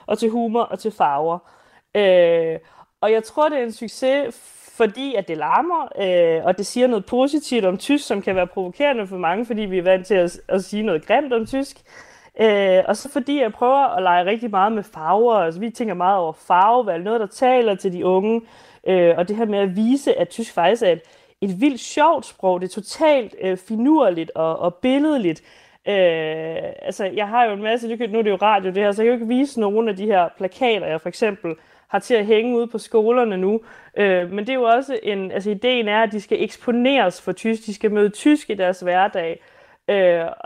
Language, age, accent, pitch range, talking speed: Danish, 30-49, native, 185-245 Hz, 225 wpm